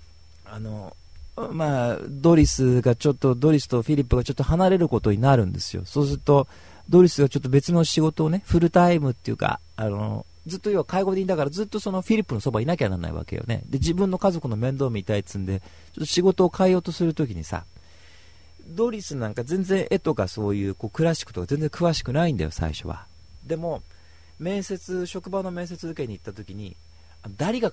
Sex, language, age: male, Japanese, 40-59